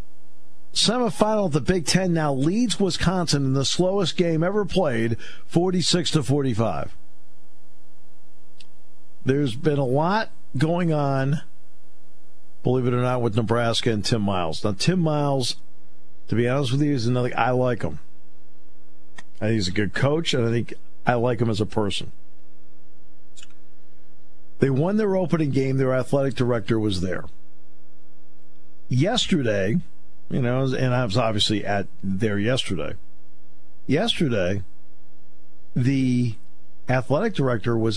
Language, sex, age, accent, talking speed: English, male, 50-69, American, 135 wpm